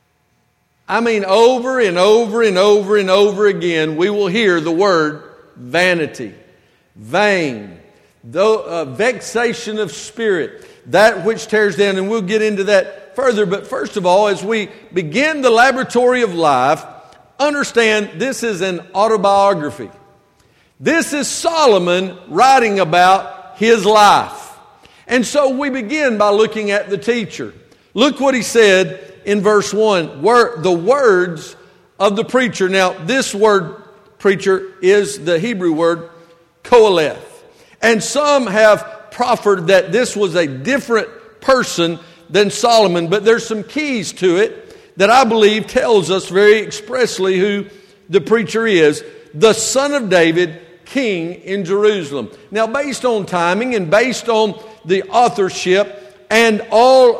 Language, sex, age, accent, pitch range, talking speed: English, male, 50-69, American, 190-235 Hz, 140 wpm